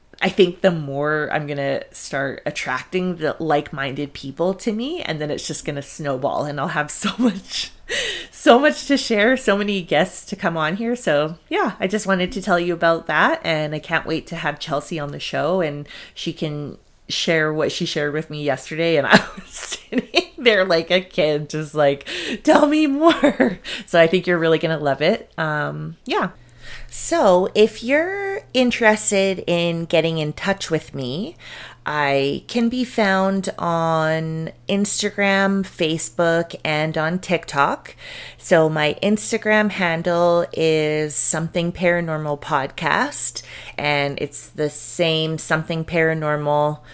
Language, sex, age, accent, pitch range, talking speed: English, female, 30-49, American, 150-195 Hz, 160 wpm